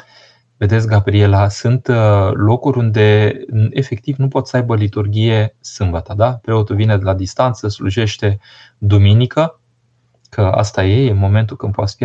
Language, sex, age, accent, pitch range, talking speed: Romanian, male, 20-39, native, 100-120 Hz, 140 wpm